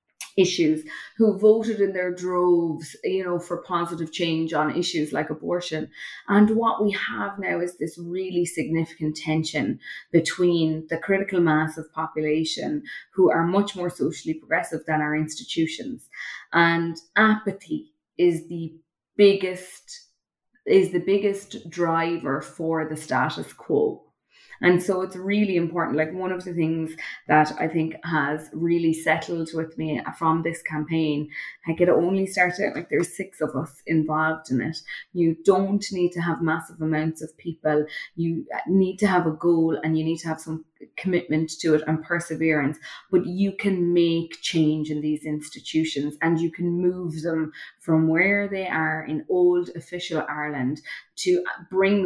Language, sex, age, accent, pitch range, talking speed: English, female, 20-39, Irish, 160-185 Hz, 155 wpm